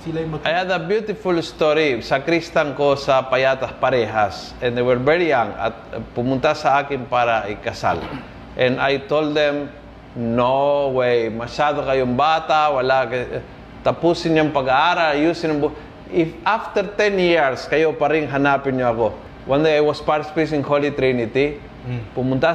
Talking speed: 135 wpm